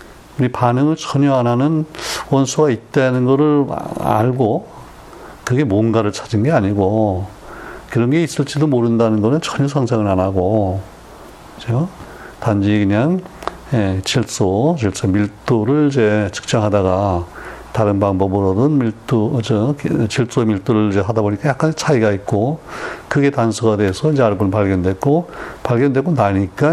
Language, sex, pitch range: Korean, male, 100-140 Hz